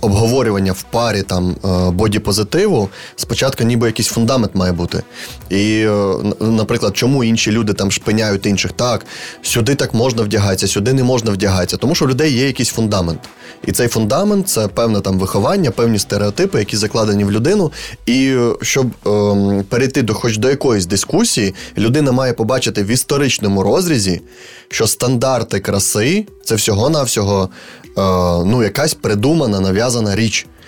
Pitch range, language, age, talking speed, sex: 100-130 Hz, Ukrainian, 20-39, 145 wpm, male